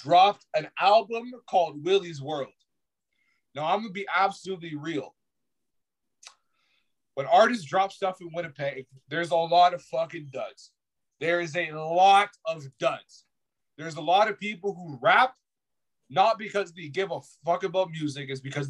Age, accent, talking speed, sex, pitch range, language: 30-49, American, 155 wpm, male, 145-190 Hz, English